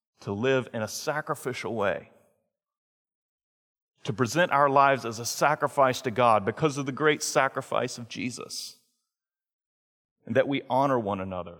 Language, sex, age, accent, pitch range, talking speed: English, male, 40-59, American, 110-160 Hz, 145 wpm